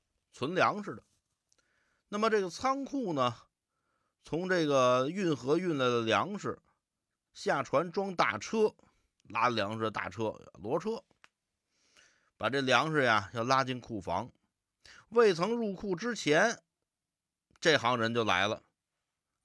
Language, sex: Chinese, male